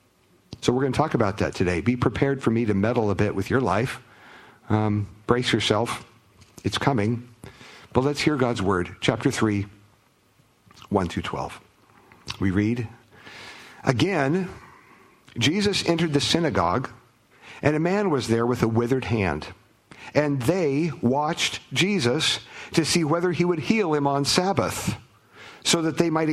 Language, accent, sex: English, American, male